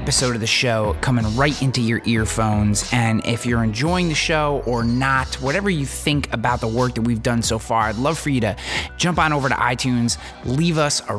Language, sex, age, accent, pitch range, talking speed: English, male, 20-39, American, 110-135 Hz, 220 wpm